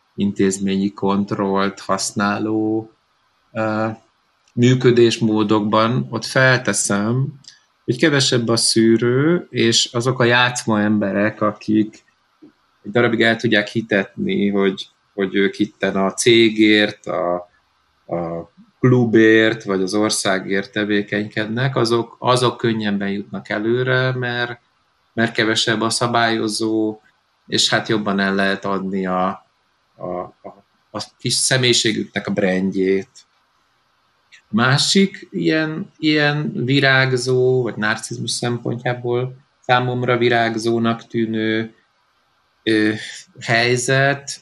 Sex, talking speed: male, 95 wpm